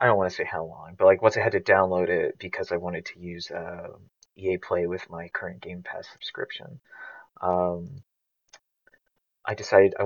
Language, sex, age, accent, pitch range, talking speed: English, male, 30-49, American, 90-105 Hz, 195 wpm